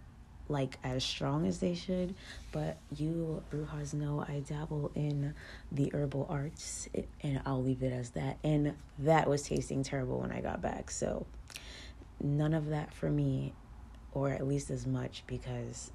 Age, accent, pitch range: 20-39, American, 130-150 Hz